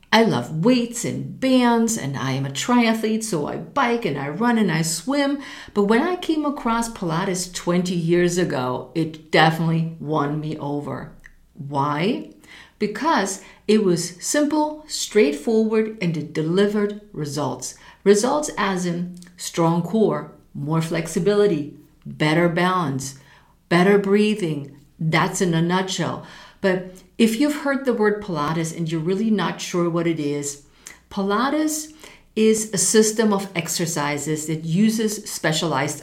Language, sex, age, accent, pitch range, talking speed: English, female, 50-69, American, 165-215 Hz, 135 wpm